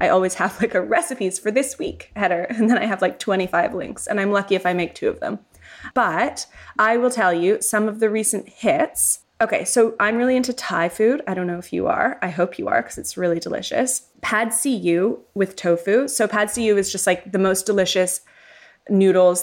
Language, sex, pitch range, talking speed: English, female, 175-215 Hz, 220 wpm